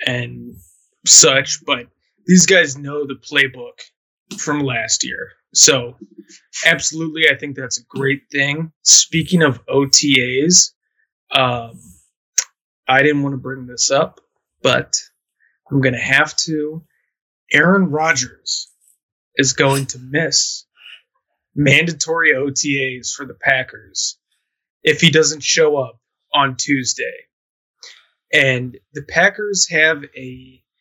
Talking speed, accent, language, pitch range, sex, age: 115 wpm, American, English, 130-155 Hz, male, 20-39